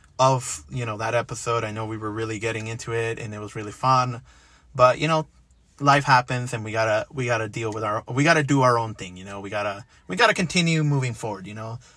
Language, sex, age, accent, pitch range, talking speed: English, male, 30-49, American, 125-165 Hz, 240 wpm